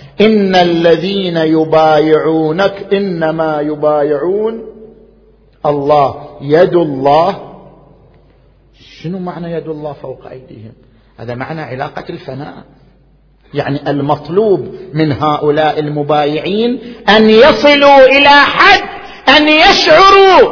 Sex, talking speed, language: male, 85 wpm, Arabic